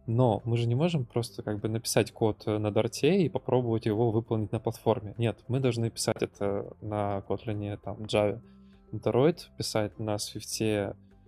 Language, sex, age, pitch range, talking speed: Russian, male, 20-39, 105-120 Hz, 165 wpm